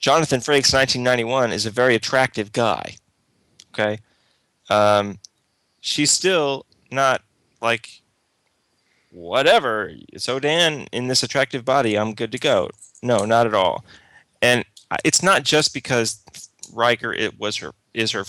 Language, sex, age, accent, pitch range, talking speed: English, male, 30-49, American, 100-130 Hz, 130 wpm